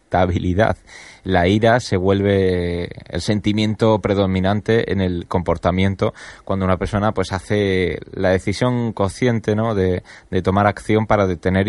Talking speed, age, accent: 130 wpm, 20-39, Spanish